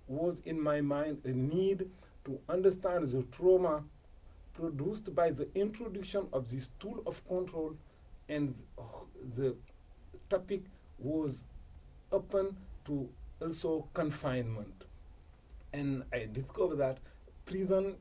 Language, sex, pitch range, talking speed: English, male, 125-185 Hz, 105 wpm